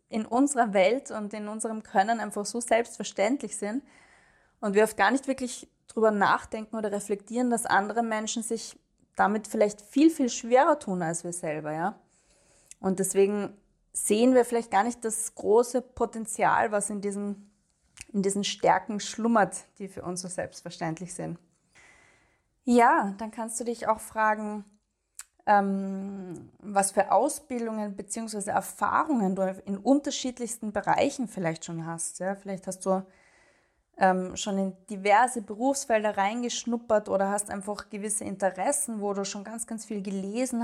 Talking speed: 145 wpm